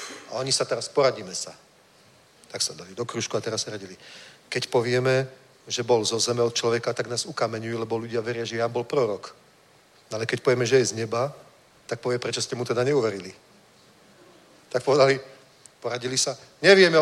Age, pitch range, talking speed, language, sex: 40-59, 125-180 Hz, 180 wpm, Czech, male